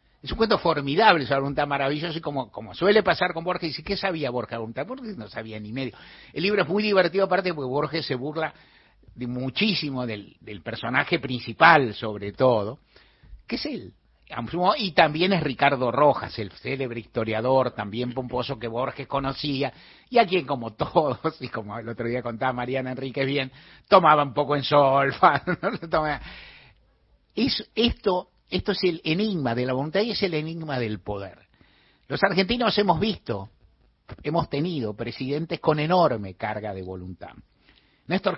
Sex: male